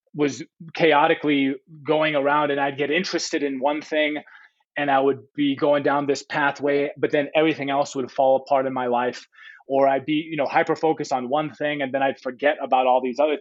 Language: English